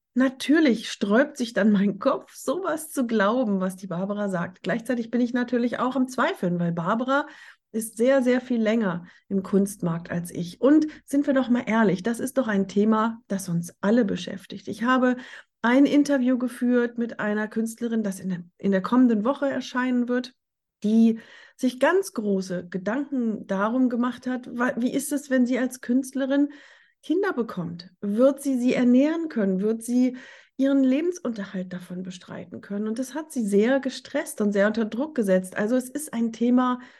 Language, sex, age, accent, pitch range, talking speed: German, female, 30-49, German, 205-260 Hz, 175 wpm